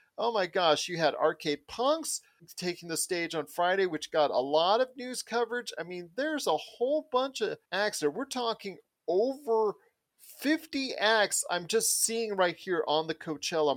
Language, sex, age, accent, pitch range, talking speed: English, male, 40-59, American, 135-185 Hz, 180 wpm